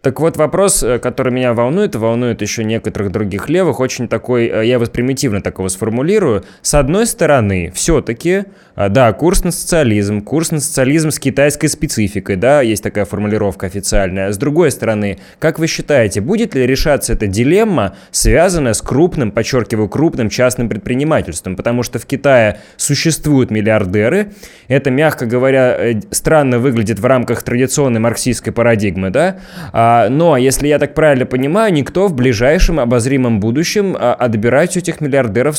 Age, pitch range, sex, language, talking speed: 20-39, 115-160 Hz, male, Russian, 150 wpm